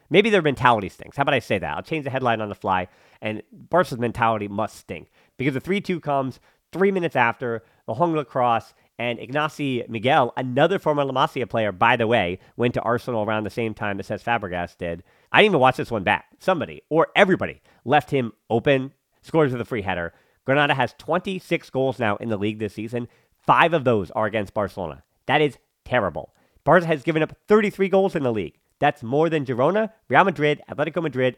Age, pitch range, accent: 40-59, 110-145 Hz, American